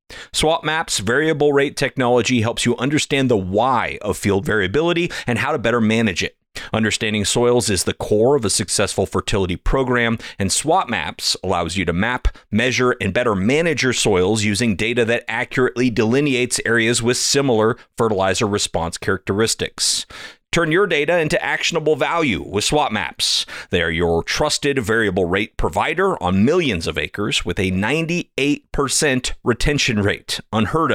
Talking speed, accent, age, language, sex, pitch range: 155 wpm, American, 30-49, English, male, 95-130 Hz